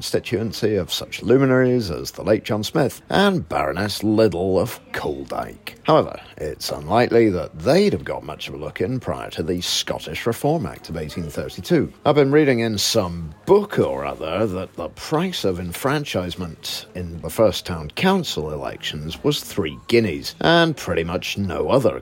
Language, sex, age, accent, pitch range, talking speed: English, male, 40-59, British, 90-135 Hz, 165 wpm